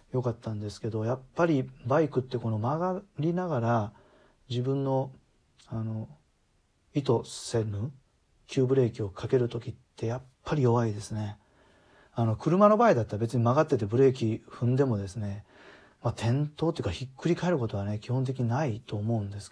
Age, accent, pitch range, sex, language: 40-59, native, 110-135 Hz, male, Japanese